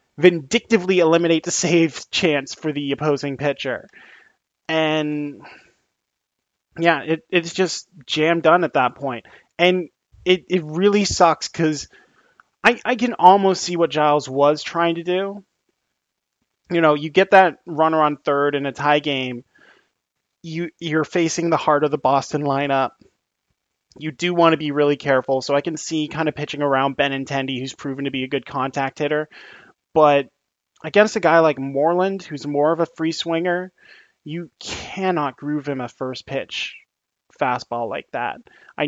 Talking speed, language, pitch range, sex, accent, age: 160 wpm, English, 140-170 Hz, male, American, 20-39